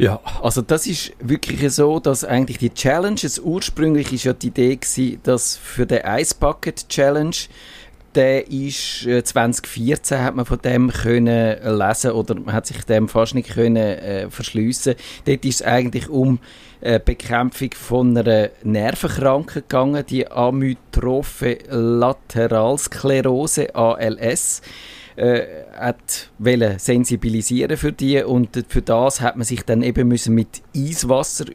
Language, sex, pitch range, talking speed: German, male, 110-135 Hz, 135 wpm